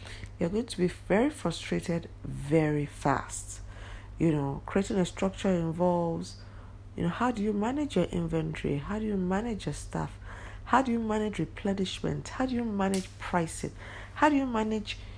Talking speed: 165 wpm